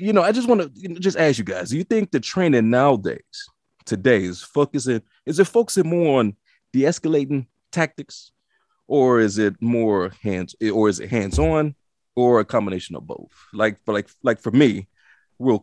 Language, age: English, 30-49